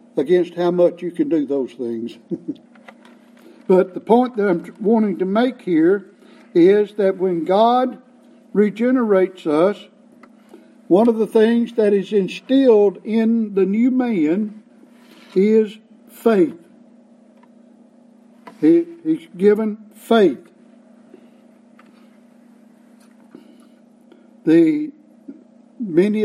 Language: English